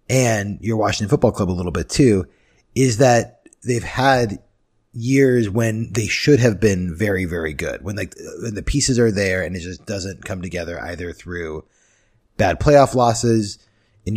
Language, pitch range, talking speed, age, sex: English, 95-120 Hz, 170 wpm, 30-49, male